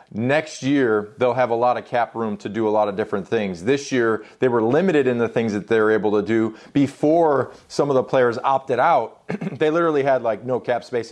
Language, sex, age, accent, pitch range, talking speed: English, male, 30-49, American, 115-155 Hz, 230 wpm